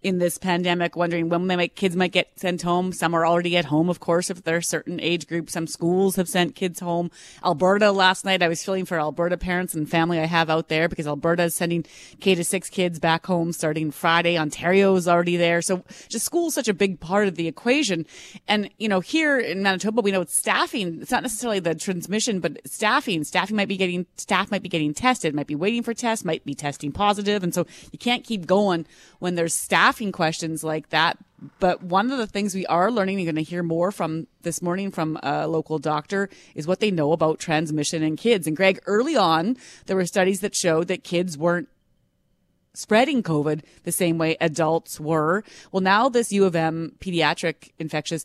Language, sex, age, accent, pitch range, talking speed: English, female, 30-49, American, 165-195 Hz, 215 wpm